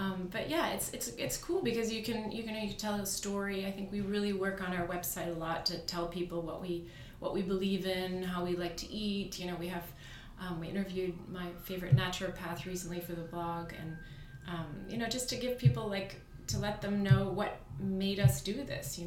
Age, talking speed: 30-49, 235 wpm